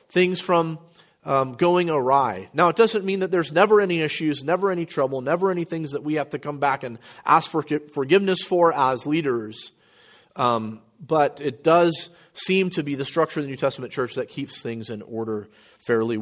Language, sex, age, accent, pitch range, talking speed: English, male, 40-59, American, 140-175 Hz, 195 wpm